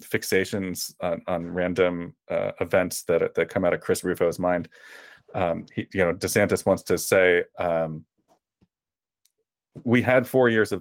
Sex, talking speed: male, 155 wpm